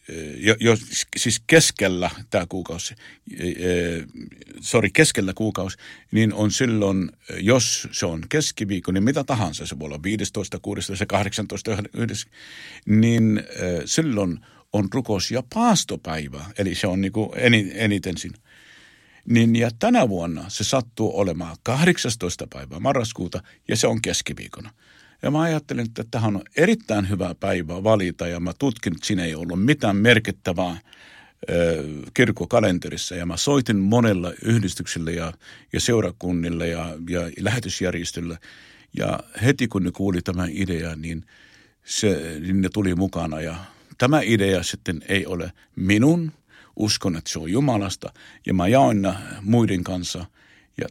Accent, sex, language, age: native, male, Finnish, 50-69